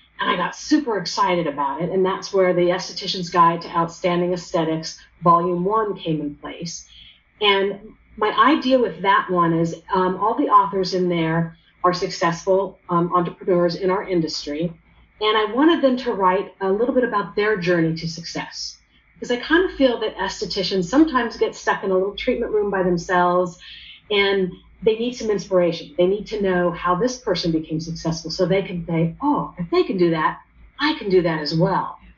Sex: female